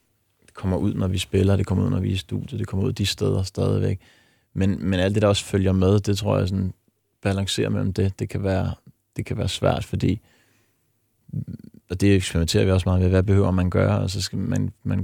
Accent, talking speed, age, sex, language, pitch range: native, 230 wpm, 20-39, male, Danish, 95-110 Hz